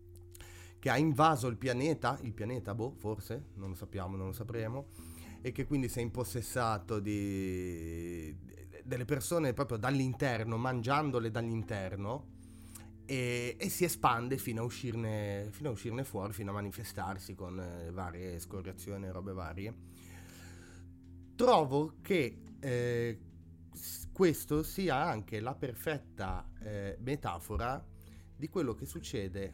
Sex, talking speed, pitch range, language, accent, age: male, 130 wpm, 95-130 Hz, Italian, native, 30-49